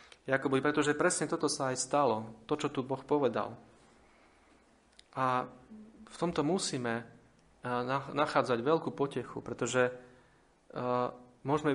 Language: Slovak